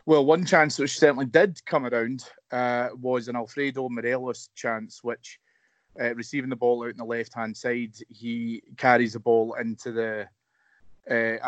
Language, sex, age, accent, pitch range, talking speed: English, male, 30-49, British, 115-130 Hz, 160 wpm